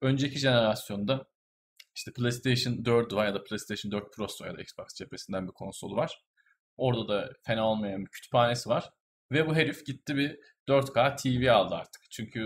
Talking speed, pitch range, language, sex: 165 wpm, 100-125 Hz, Turkish, male